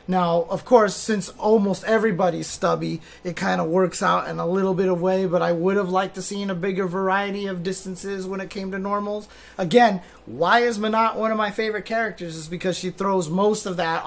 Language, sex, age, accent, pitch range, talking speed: English, male, 30-49, American, 165-195 Hz, 220 wpm